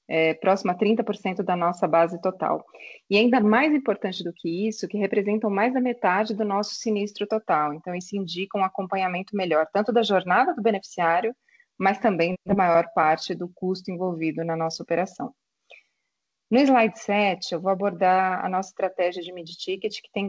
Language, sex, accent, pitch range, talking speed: Portuguese, female, Brazilian, 175-205 Hz, 170 wpm